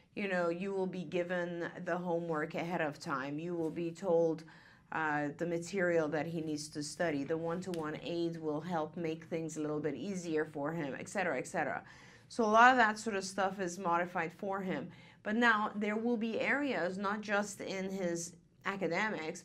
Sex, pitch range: female, 170-205 Hz